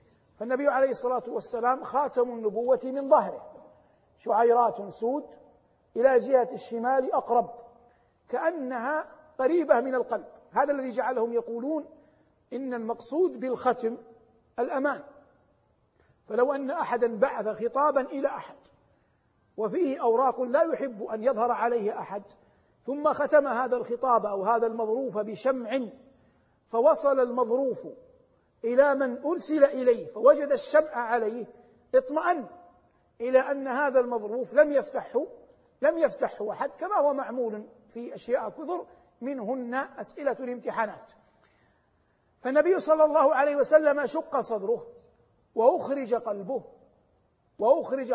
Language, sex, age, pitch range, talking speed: Arabic, male, 50-69, 235-285 Hz, 110 wpm